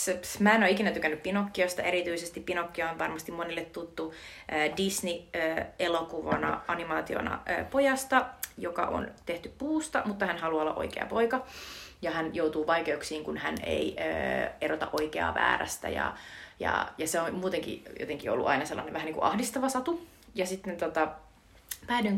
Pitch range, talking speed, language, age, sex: 165-220 Hz, 145 wpm, Finnish, 30-49, female